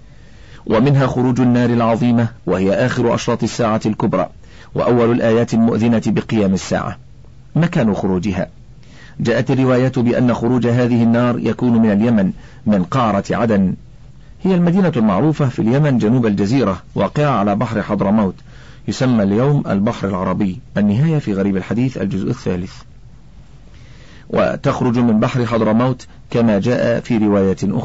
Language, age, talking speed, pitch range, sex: Arabic, 50-69, 125 wpm, 110-135 Hz, male